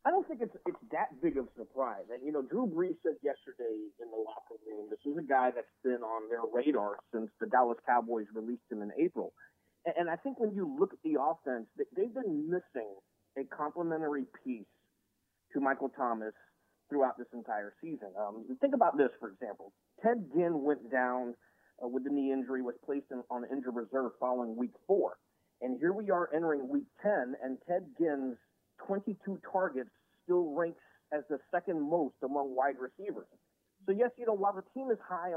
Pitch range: 125-190 Hz